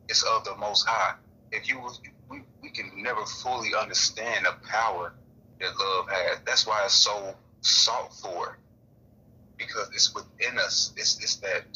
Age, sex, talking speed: 30-49, male, 160 wpm